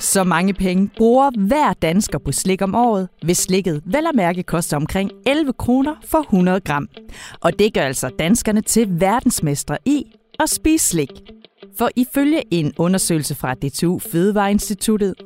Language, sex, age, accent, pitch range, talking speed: Danish, female, 30-49, native, 165-230 Hz, 155 wpm